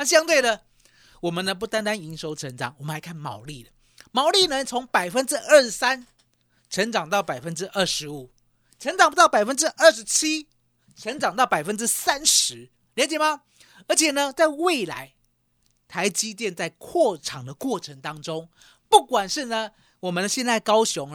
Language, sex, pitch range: Chinese, male, 160-265 Hz